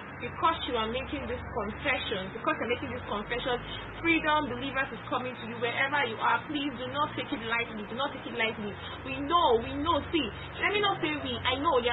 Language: English